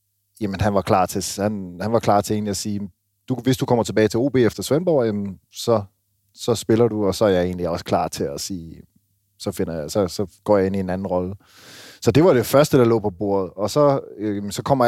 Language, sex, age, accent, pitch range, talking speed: Danish, male, 30-49, native, 95-115 Hz, 255 wpm